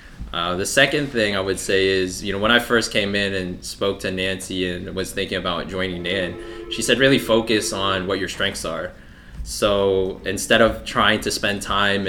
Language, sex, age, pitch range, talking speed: English, male, 20-39, 90-105 Hz, 205 wpm